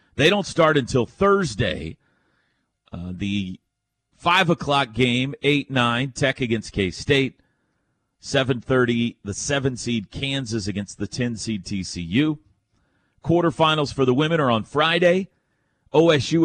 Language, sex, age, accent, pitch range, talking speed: English, male, 40-59, American, 105-150 Hz, 115 wpm